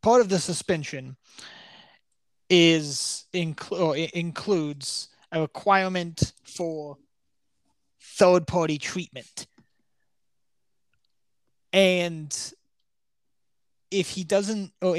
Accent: American